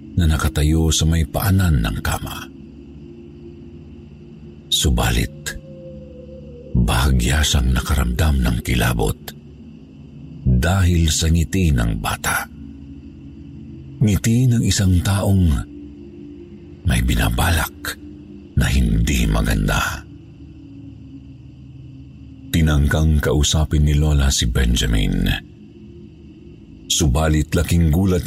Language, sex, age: Filipino, male, 50-69